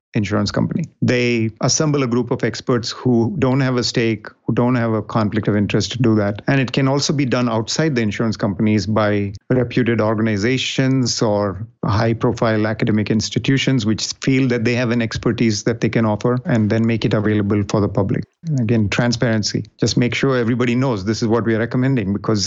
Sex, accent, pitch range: male, Indian, 110-125 Hz